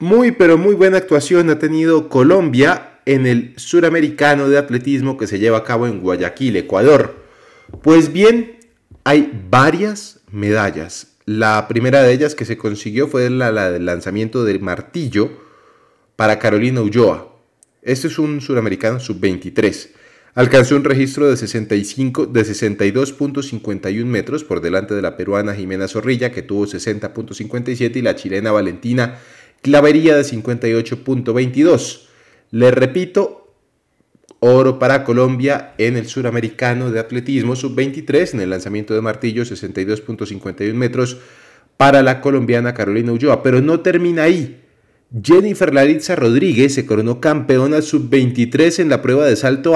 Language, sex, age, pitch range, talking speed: Spanish, male, 30-49, 110-145 Hz, 135 wpm